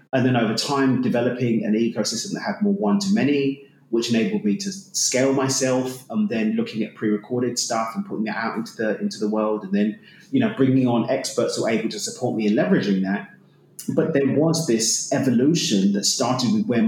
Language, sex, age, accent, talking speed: English, male, 30-49, British, 205 wpm